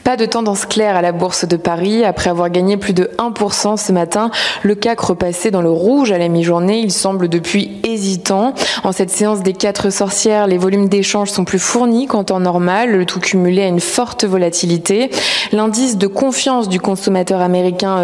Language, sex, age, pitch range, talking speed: French, female, 20-39, 185-230 Hz, 195 wpm